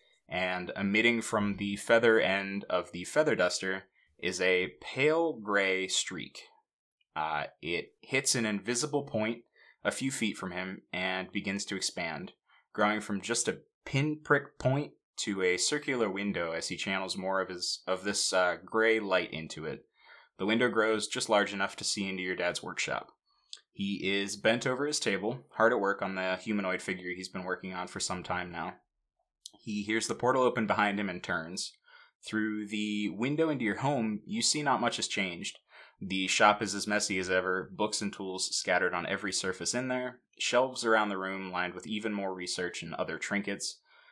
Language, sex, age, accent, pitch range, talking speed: English, male, 20-39, American, 95-115 Hz, 185 wpm